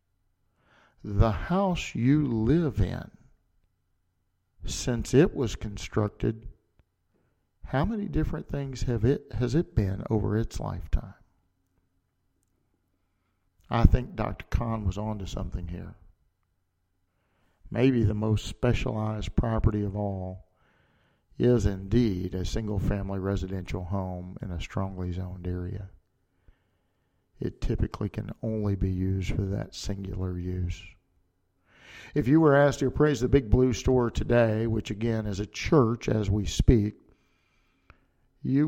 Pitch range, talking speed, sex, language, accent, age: 90-125 Hz, 120 wpm, male, English, American, 50-69